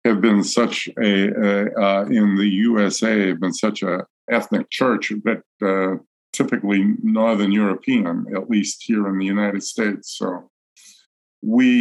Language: English